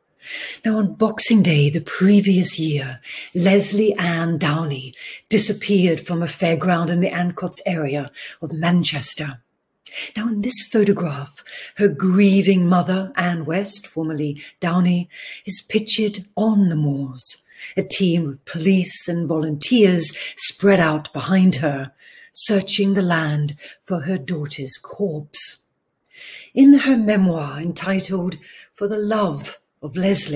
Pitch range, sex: 160-200 Hz, female